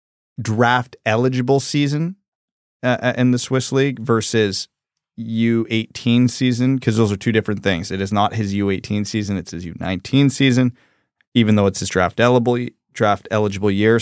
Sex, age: male, 30-49